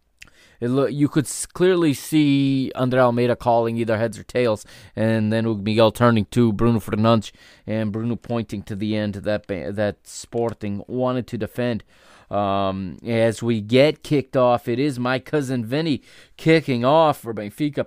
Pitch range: 110-135 Hz